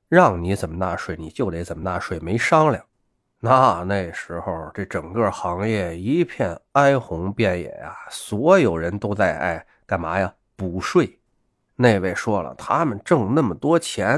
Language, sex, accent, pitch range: Chinese, male, native, 95-130 Hz